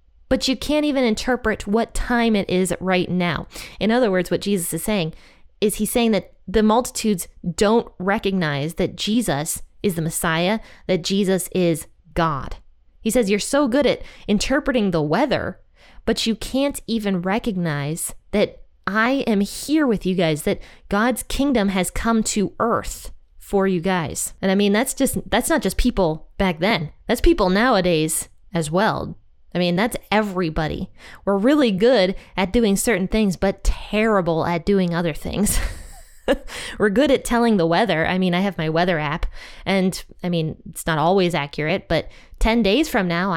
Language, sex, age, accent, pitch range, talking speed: English, female, 20-39, American, 175-225 Hz, 170 wpm